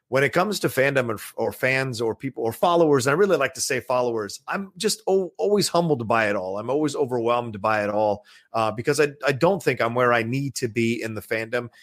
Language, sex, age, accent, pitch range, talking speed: English, male, 30-49, American, 115-150 Hz, 235 wpm